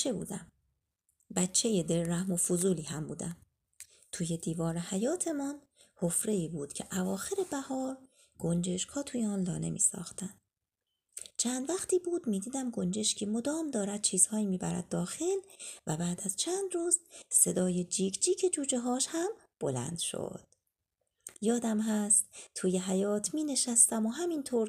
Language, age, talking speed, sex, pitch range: Arabic, 30-49, 130 wpm, female, 185-280 Hz